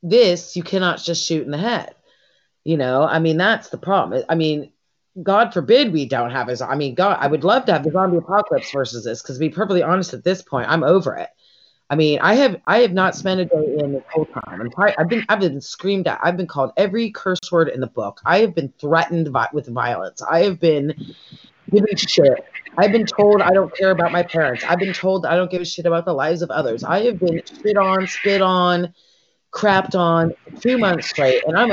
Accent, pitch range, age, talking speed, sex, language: American, 150-195 Hz, 30-49, 235 wpm, female, English